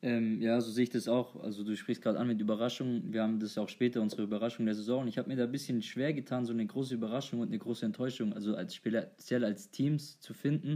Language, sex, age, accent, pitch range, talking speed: German, male, 20-39, German, 105-120 Hz, 260 wpm